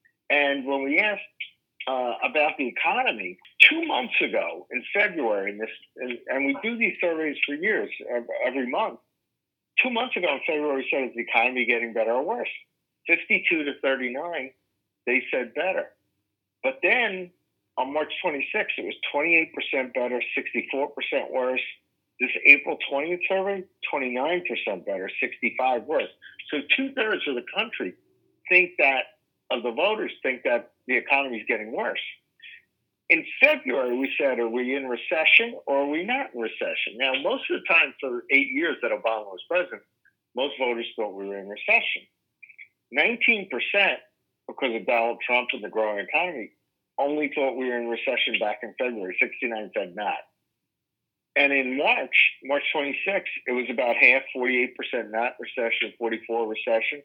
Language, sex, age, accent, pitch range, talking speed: English, male, 50-69, American, 120-180 Hz, 155 wpm